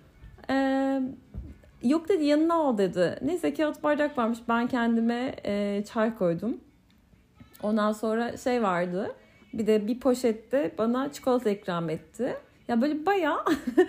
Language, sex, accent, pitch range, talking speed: Turkish, female, native, 220-275 Hz, 130 wpm